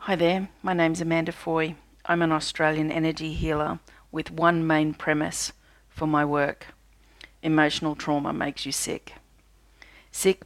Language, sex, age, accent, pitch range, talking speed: English, female, 40-59, Australian, 150-165 Hz, 140 wpm